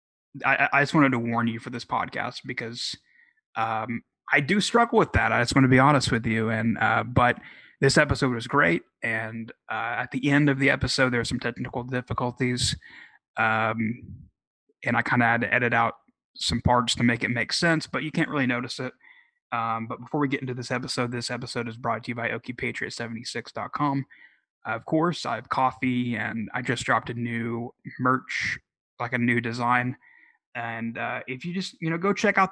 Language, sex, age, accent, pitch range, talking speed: English, male, 20-39, American, 120-140 Hz, 205 wpm